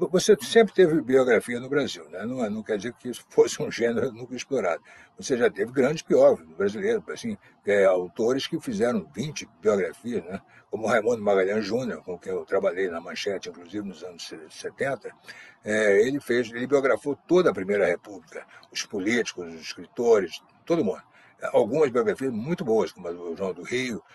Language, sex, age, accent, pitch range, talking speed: Portuguese, male, 60-79, Brazilian, 125-195 Hz, 180 wpm